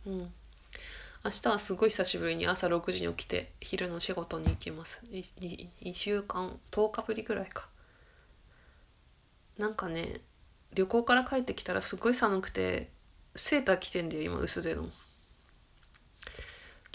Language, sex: Japanese, female